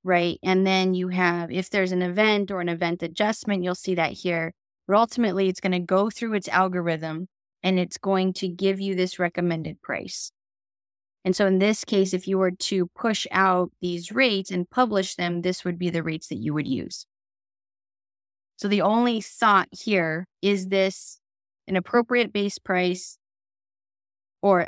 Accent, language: American, English